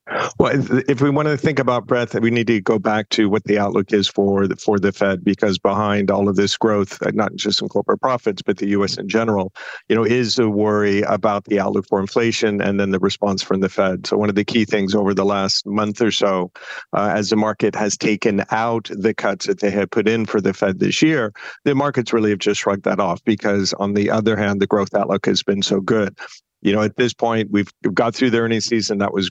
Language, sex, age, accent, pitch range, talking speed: English, male, 50-69, American, 100-110 Hz, 245 wpm